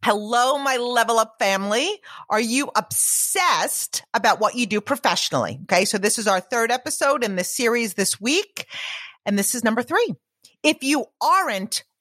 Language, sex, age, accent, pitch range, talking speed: English, female, 40-59, American, 225-310 Hz, 165 wpm